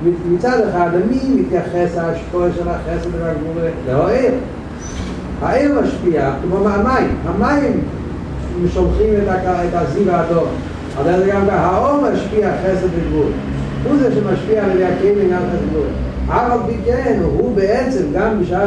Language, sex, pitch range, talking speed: Hebrew, male, 125-185 Hz, 120 wpm